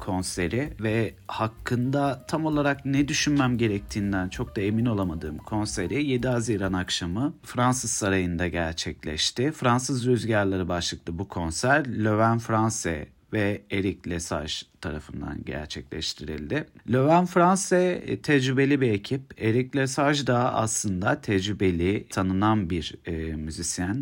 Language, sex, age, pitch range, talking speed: Turkish, male, 40-59, 95-145 Hz, 110 wpm